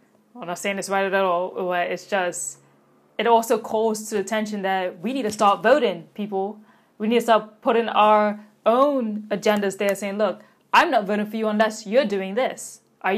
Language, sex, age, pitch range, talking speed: English, female, 10-29, 200-240 Hz, 200 wpm